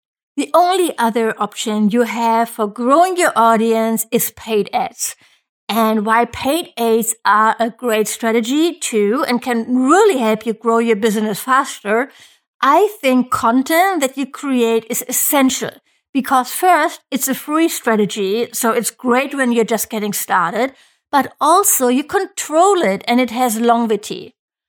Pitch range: 225-285 Hz